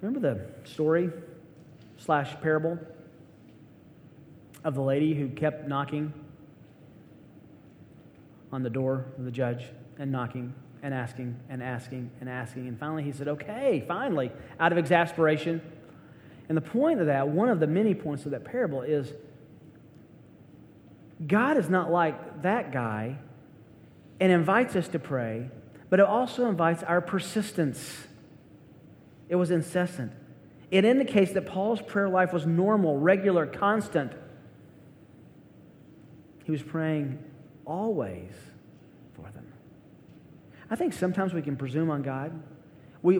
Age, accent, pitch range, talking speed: 30-49, American, 145-175 Hz, 130 wpm